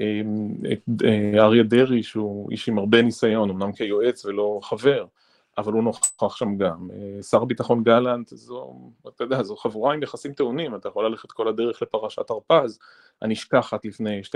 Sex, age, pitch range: male, 30-49, 110-135 Hz